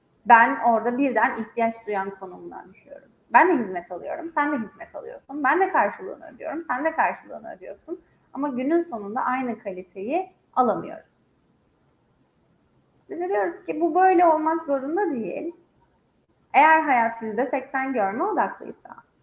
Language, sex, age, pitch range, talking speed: Turkish, female, 30-49, 230-315 Hz, 130 wpm